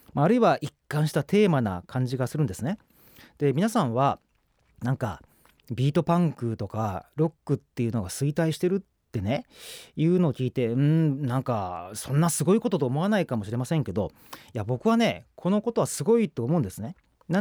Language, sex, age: Japanese, male, 30-49